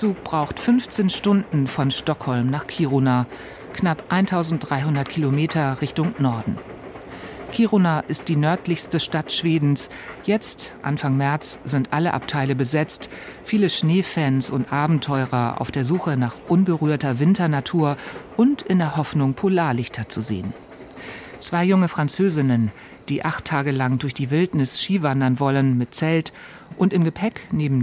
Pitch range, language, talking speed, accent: 135-170 Hz, German, 135 wpm, German